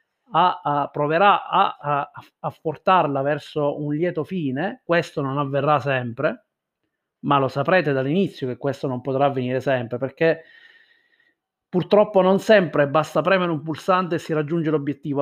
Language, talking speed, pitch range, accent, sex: Italian, 140 wpm, 150-185 Hz, native, male